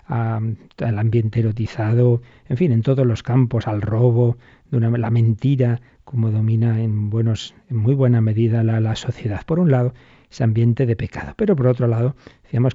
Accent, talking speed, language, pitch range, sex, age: Spanish, 180 wpm, Spanish, 115-130 Hz, male, 40-59